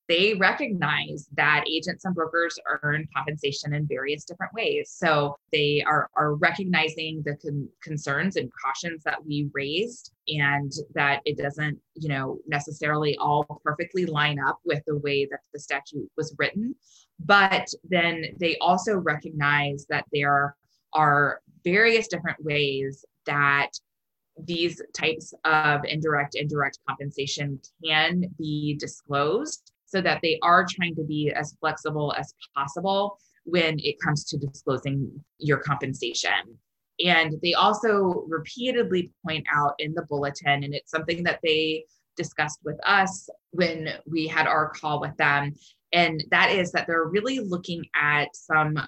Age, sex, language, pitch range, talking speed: 20-39, female, English, 145-170 Hz, 140 wpm